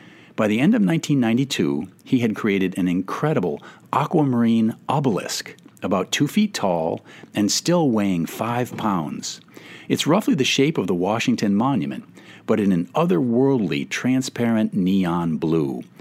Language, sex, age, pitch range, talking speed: English, male, 50-69, 90-130 Hz, 135 wpm